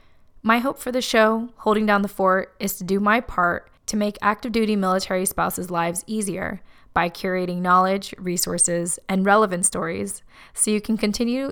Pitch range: 180-220 Hz